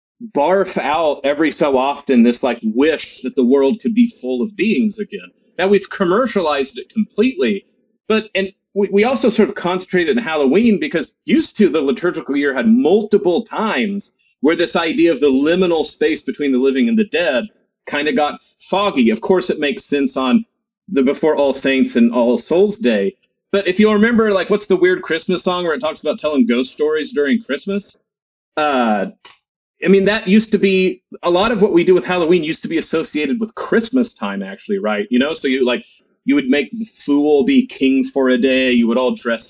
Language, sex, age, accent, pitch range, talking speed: English, male, 40-59, American, 140-215 Hz, 205 wpm